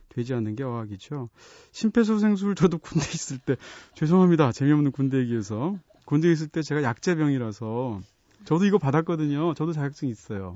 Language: Korean